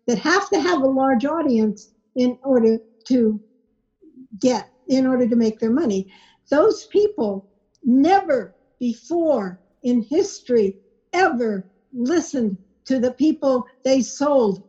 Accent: American